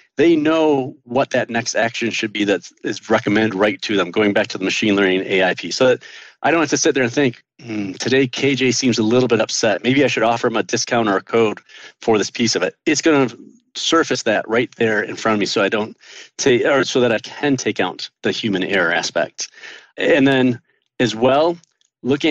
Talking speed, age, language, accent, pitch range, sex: 230 wpm, 40-59, English, American, 110-135 Hz, male